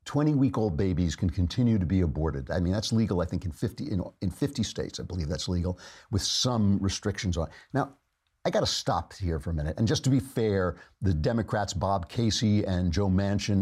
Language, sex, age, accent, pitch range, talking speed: English, male, 50-69, American, 95-125 Hz, 210 wpm